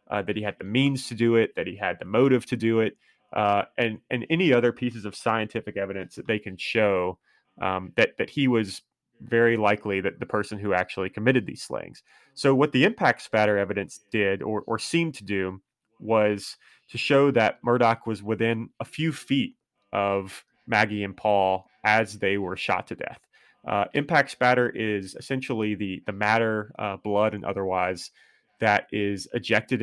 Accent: American